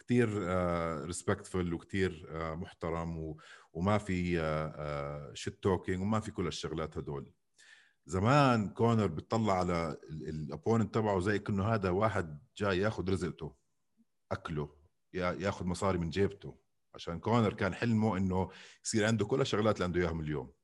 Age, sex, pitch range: 50-69, male, 85-115 Hz